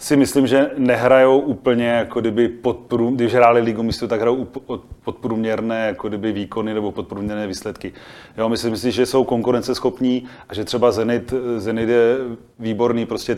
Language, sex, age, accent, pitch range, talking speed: Czech, male, 30-49, native, 105-120 Hz, 160 wpm